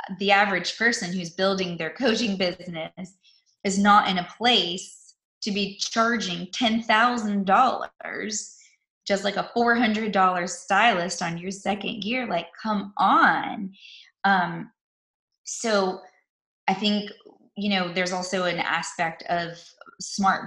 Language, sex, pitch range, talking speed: English, female, 175-210 Hz, 120 wpm